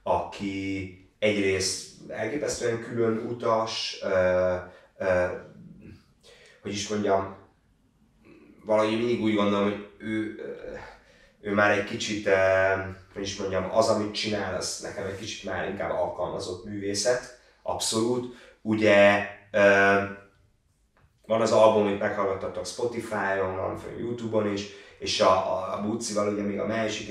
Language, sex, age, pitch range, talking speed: Hungarian, male, 30-49, 95-110 Hz, 125 wpm